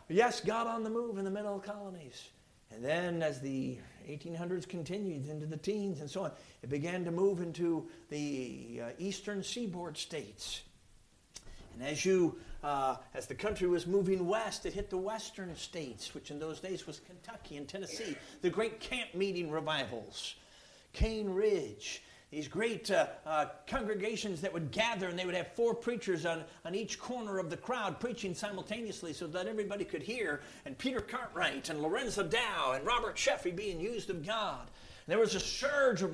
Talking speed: 180 wpm